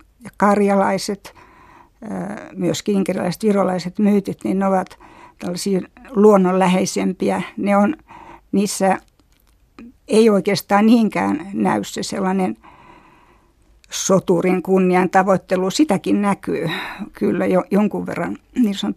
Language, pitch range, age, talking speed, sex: Finnish, 185-215 Hz, 60-79, 90 wpm, female